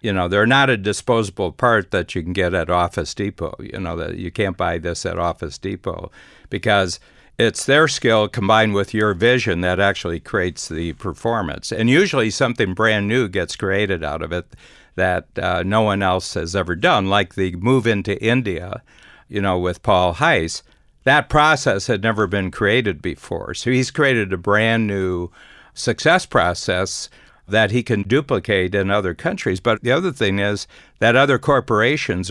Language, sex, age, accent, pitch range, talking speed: English, male, 60-79, American, 90-115 Hz, 175 wpm